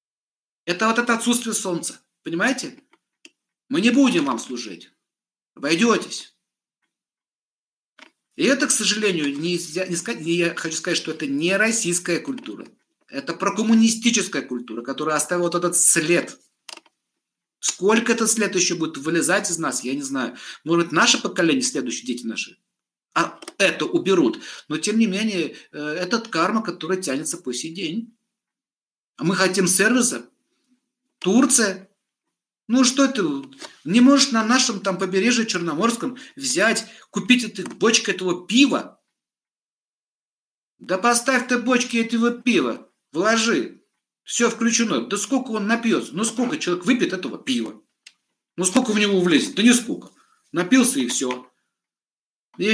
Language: Russian